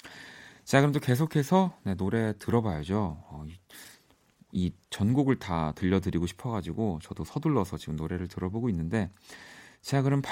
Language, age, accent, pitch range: Korean, 40-59, native, 95-135 Hz